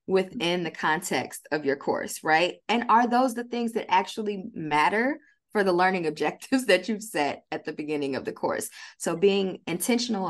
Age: 20-39